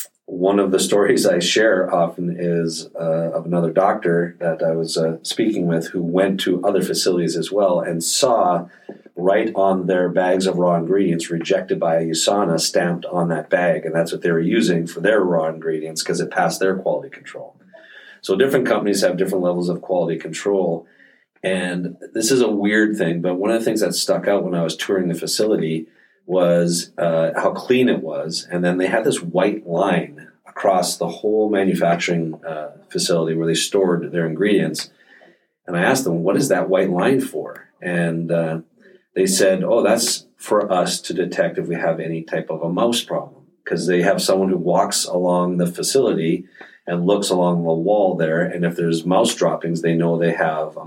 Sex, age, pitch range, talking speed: male, 40-59, 85-95 Hz, 195 wpm